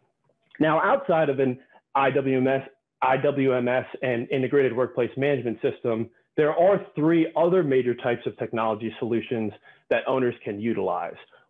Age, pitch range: 30-49, 125-155 Hz